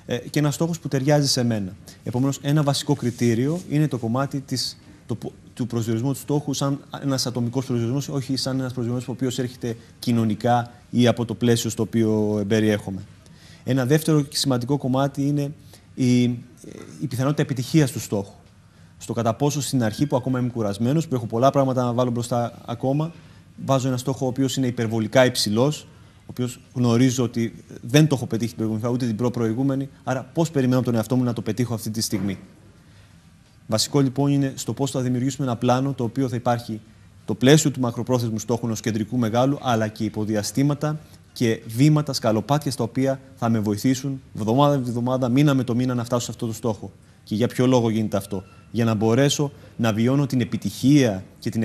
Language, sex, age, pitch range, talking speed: Greek, male, 30-49, 110-135 Hz, 185 wpm